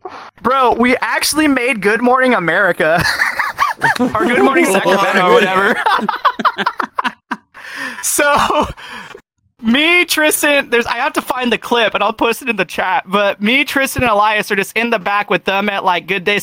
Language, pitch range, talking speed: English, 180-245 Hz, 170 wpm